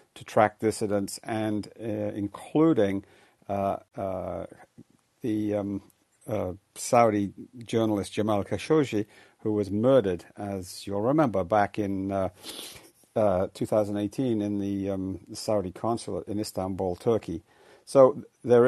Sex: male